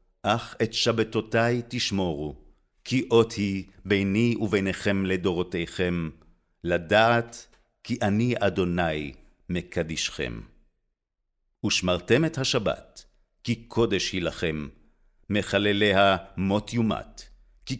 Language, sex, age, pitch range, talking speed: Hebrew, male, 50-69, 80-105 Hz, 90 wpm